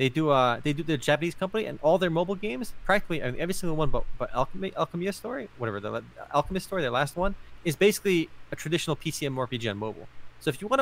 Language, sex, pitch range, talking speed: English, male, 125-180 Hz, 225 wpm